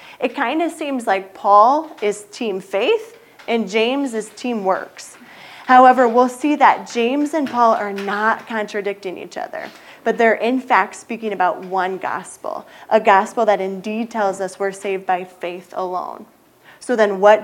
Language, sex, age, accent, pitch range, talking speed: English, female, 20-39, American, 190-230 Hz, 165 wpm